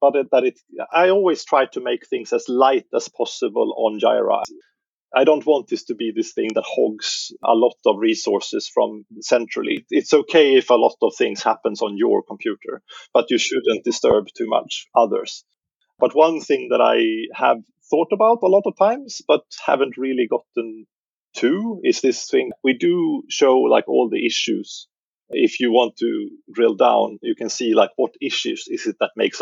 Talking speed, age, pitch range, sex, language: 190 wpm, 30-49, 285-420 Hz, male, Polish